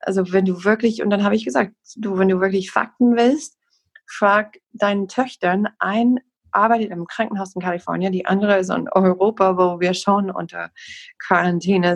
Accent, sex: German, female